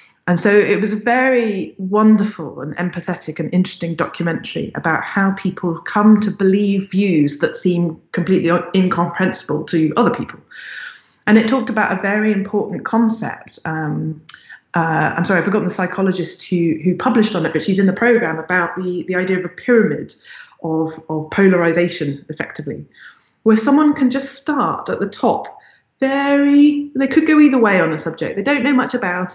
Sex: female